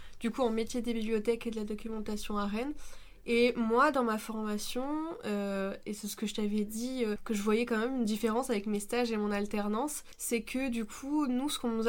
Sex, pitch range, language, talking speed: female, 205-235 Hz, French, 230 wpm